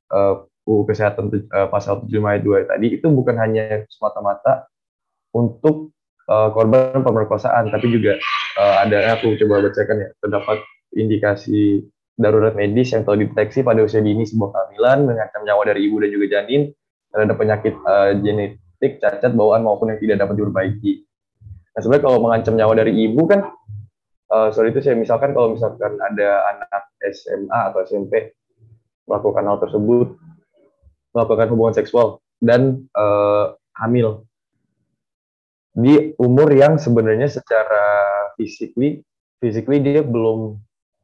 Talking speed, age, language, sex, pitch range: 130 wpm, 10-29, Indonesian, male, 105-120 Hz